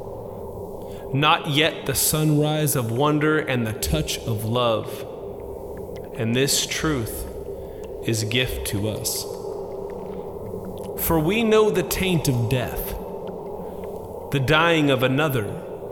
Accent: American